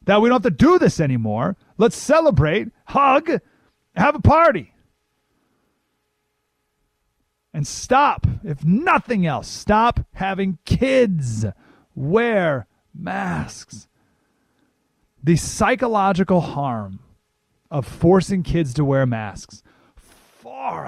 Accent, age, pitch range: American, 30-49, 125-185 Hz